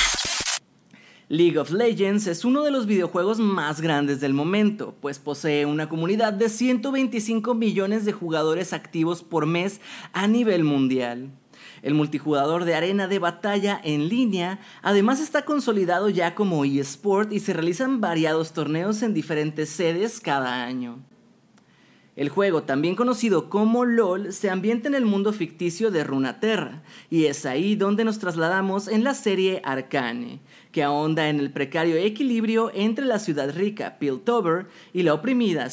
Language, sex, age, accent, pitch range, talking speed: Spanish, male, 30-49, Mexican, 155-215 Hz, 150 wpm